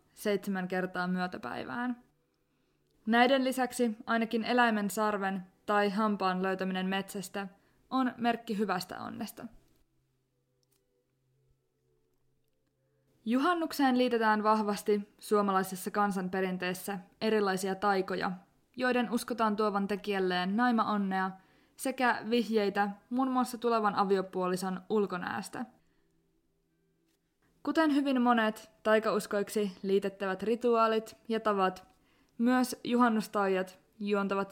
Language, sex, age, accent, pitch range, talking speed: Finnish, female, 20-39, native, 185-235 Hz, 80 wpm